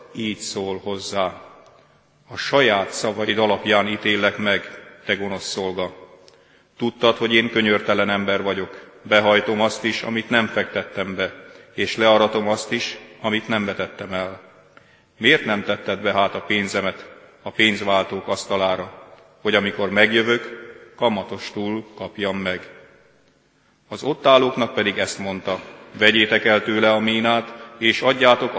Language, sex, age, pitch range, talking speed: Hungarian, male, 40-59, 95-110 Hz, 130 wpm